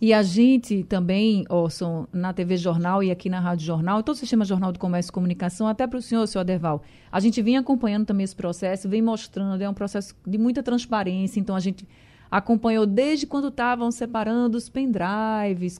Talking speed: 195 wpm